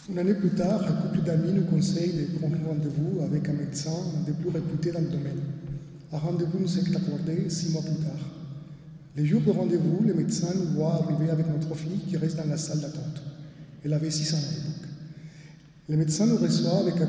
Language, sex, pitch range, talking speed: French, male, 155-170 Hz, 210 wpm